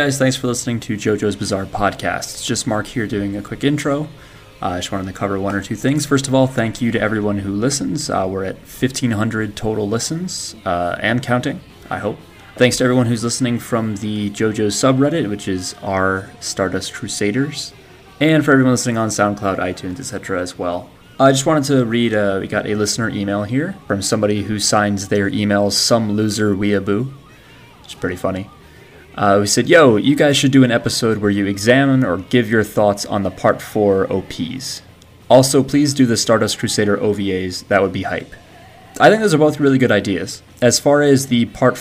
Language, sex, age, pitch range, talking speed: English, male, 20-39, 100-130 Hz, 205 wpm